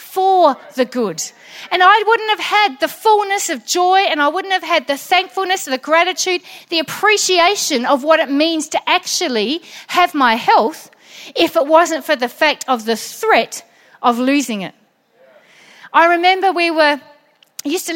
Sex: female